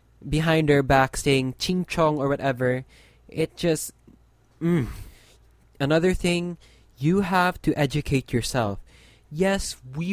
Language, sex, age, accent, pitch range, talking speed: English, male, 20-39, Filipino, 130-165 Hz, 120 wpm